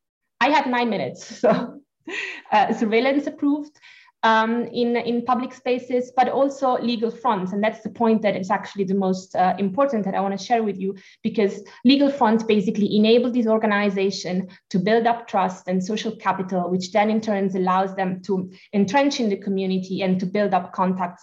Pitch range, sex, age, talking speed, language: 190-235 Hz, female, 20-39, 185 wpm, English